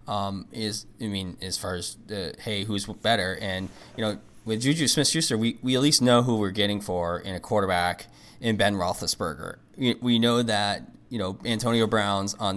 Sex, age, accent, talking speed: male, 20-39, American, 200 wpm